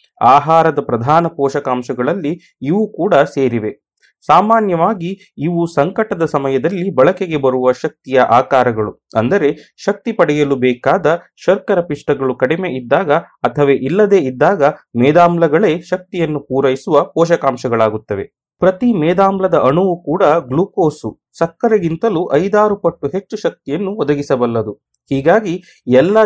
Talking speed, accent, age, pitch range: 95 wpm, native, 30-49, 135-185 Hz